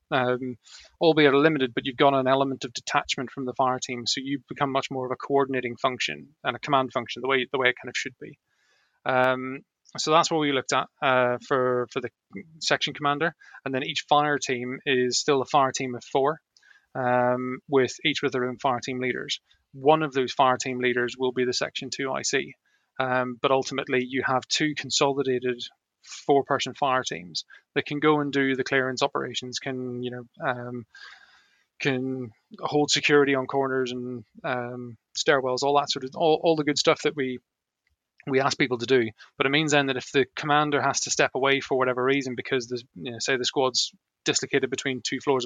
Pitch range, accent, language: 125-140 Hz, British, English